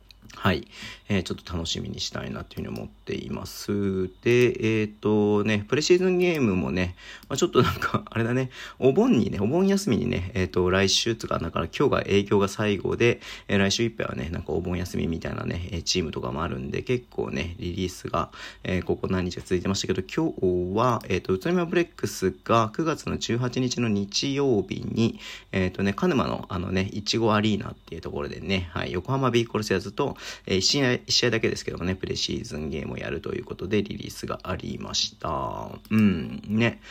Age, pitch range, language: 40-59, 90-115 Hz, Japanese